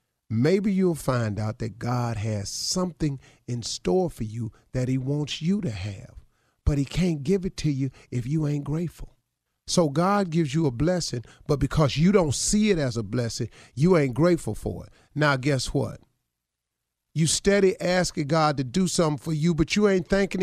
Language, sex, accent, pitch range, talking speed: English, male, American, 115-180 Hz, 195 wpm